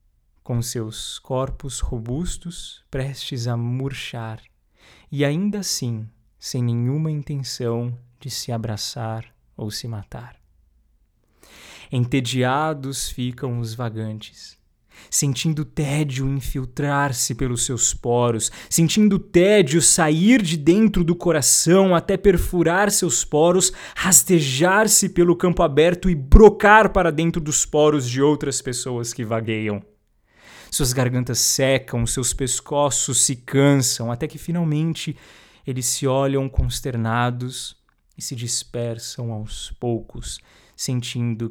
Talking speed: 110 wpm